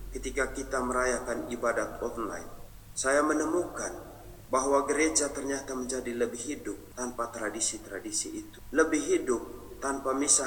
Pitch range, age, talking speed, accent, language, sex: 110-140 Hz, 40-59, 115 wpm, native, Indonesian, male